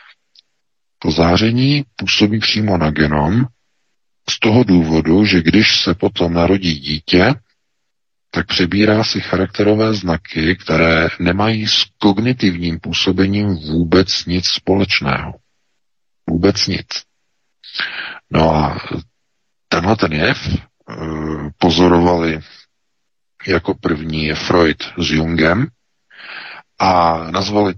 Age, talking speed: 50-69, 95 wpm